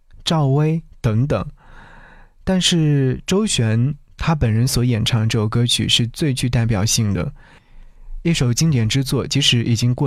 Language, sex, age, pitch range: Chinese, male, 20-39, 115-145 Hz